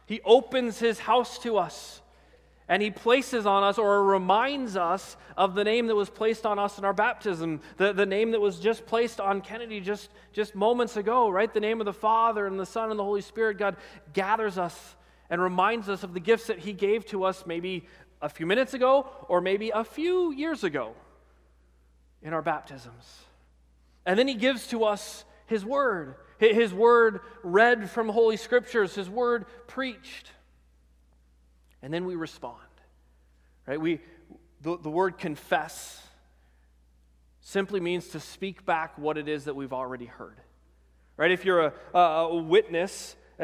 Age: 30-49